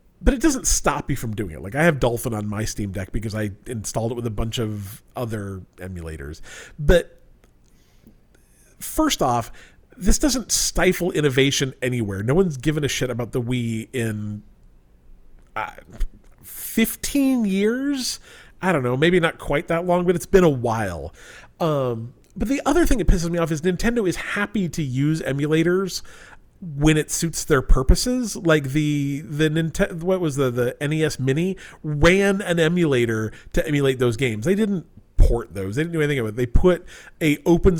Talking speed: 175 wpm